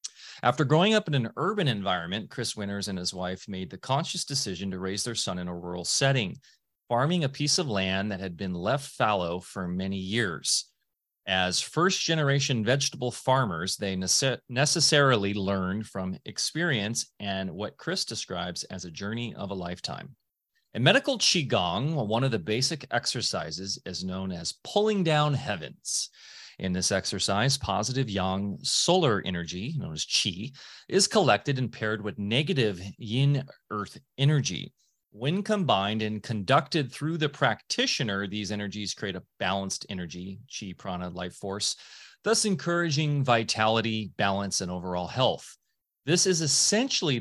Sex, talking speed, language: male, 145 wpm, English